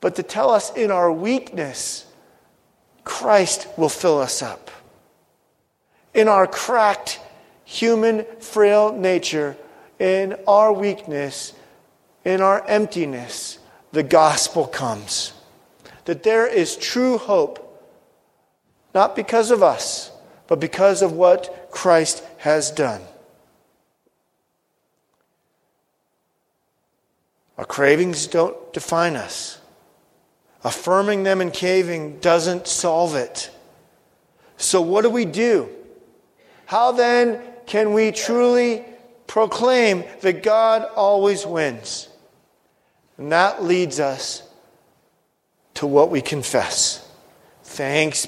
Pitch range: 170-225 Hz